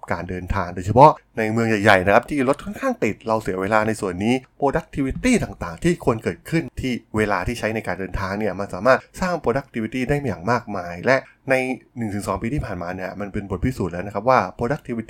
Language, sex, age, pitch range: Thai, male, 20-39, 95-125 Hz